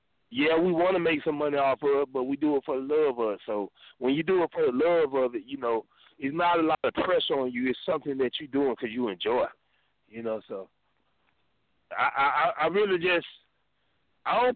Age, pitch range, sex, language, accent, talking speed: 20-39, 125-180 Hz, male, English, American, 235 wpm